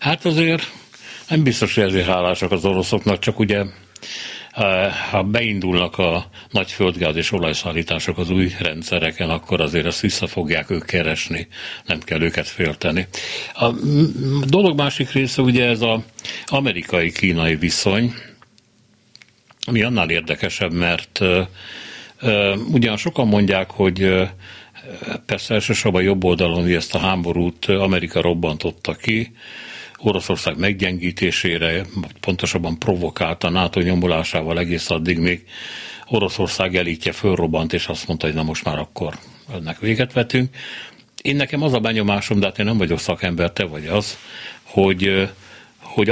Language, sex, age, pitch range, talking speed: Hungarian, male, 60-79, 85-115 Hz, 130 wpm